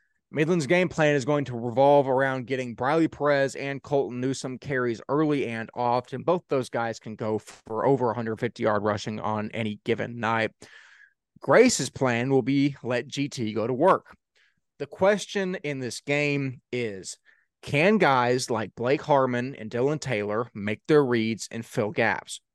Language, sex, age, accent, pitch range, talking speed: English, male, 30-49, American, 115-150 Hz, 160 wpm